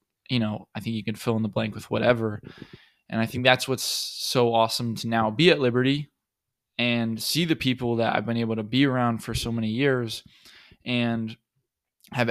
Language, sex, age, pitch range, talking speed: English, male, 20-39, 110-130 Hz, 200 wpm